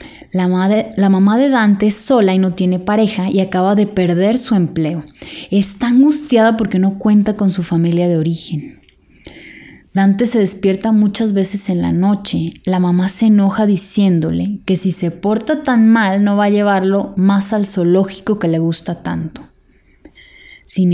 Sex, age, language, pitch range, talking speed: female, 20-39, Spanish, 180-215 Hz, 165 wpm